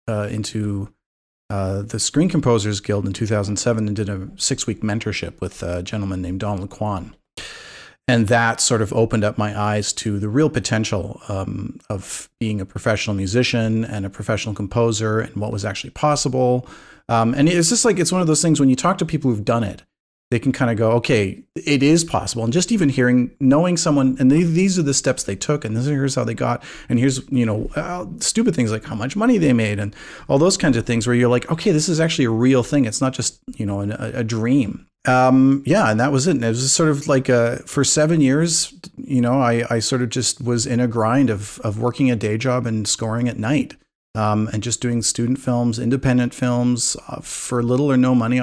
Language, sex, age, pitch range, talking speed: English, male, 40-59, 110-135 Hz, 225 wpm